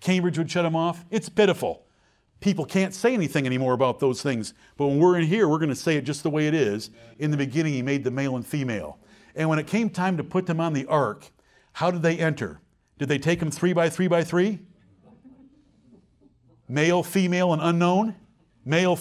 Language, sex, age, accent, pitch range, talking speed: English, male, 50-69, American, 140-185 Hz, 215 wpm